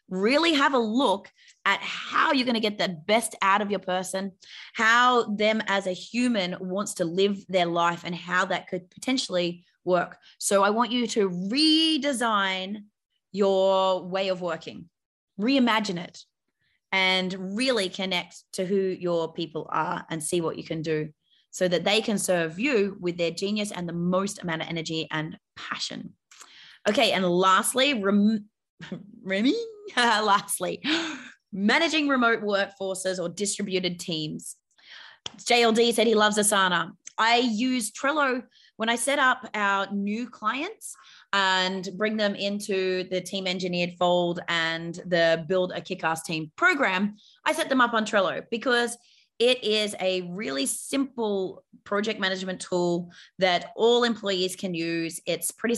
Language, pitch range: English, 180-230 Hz